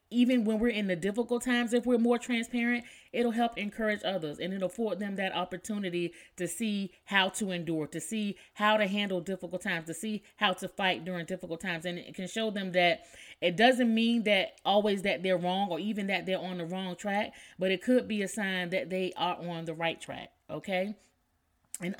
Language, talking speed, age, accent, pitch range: English, 215 wpm, 30-49, American, 180-225 Hz